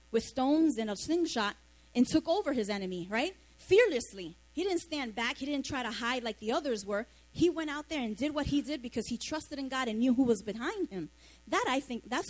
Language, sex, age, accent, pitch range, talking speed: English, female, 20-39, American, 220-290 Hz, 240 wpm